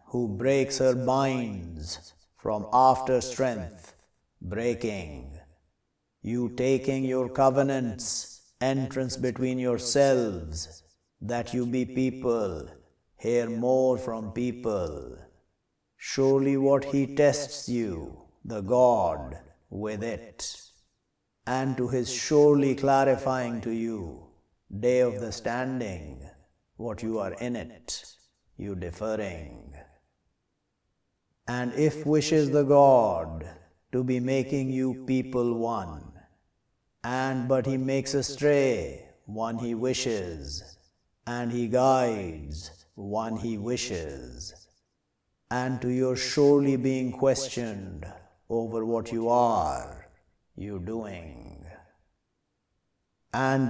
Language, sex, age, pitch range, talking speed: English, male, 50-69, 95-130 Hz, 95 wpm